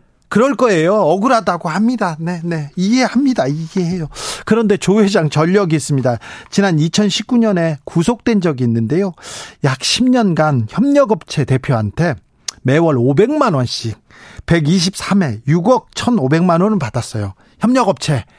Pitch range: 135-205 Hz